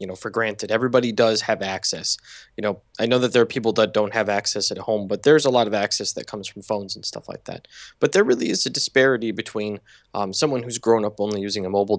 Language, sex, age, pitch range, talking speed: English, male, 20-39, 105-125 Hz, 260 wpm